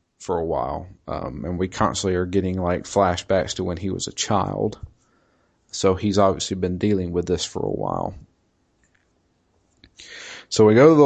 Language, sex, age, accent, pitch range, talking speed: English, male, 30-49, American, 85-105 Hz, 175 wpm